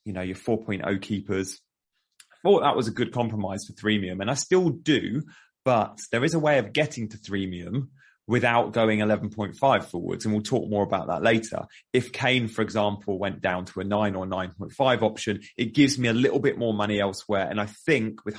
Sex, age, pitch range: male, 30-49, 100-120 Hz